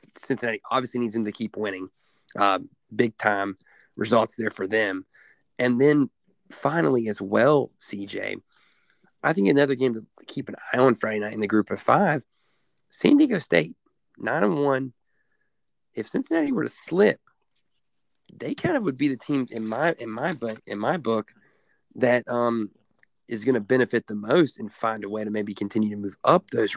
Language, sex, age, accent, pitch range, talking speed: English, male, 30-49, American, 110-135 Hz, 180 wpm